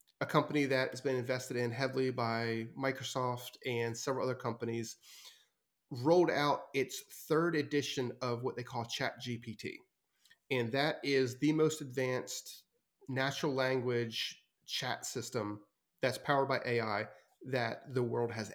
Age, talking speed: 30-49, 140 wpm